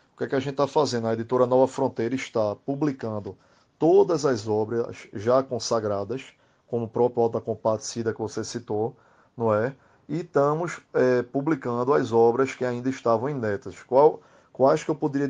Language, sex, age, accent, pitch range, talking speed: Portuguese, male, 20-39, Brazilian, 115-135 Hz, 165 wpm